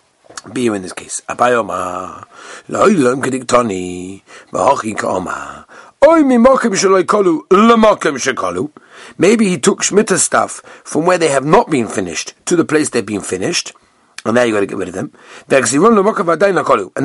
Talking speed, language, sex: 115 wpm, English, male